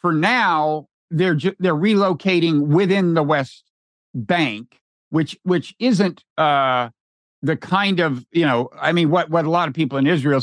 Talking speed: 165 wpm